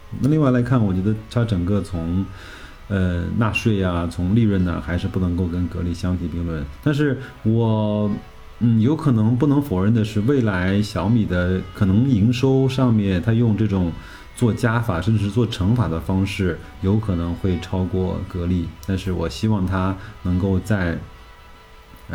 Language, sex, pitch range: Chinese, male, 90-115 Hz